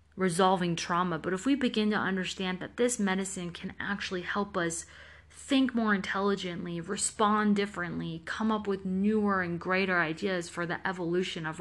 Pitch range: 170-215 Hz